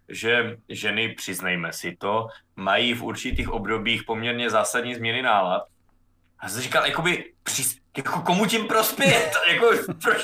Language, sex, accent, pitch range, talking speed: Czech, male, native, 115-150 Hz, 140 wpm